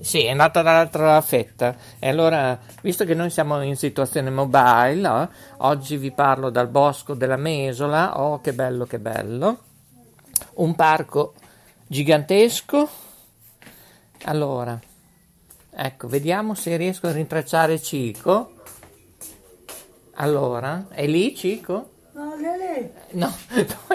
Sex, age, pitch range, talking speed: male, 50-69, 135-185 Hz, 110 wpm